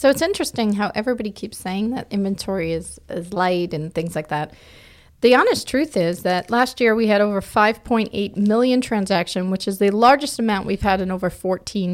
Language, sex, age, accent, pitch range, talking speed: English, female, 40-59, American, 170-215 Hz, 195 wpm